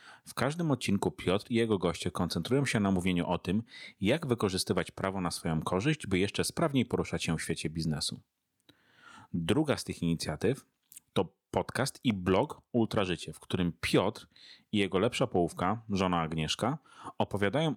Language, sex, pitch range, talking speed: Polish, male, 90-120 Hz, 155 wpm